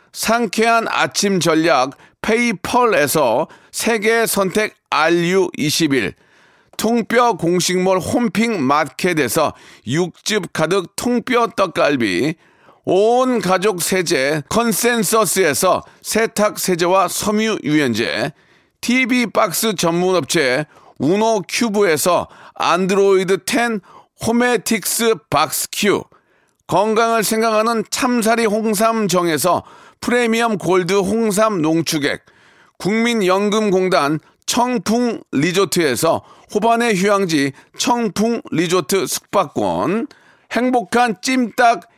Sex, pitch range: male, 185-235 Hz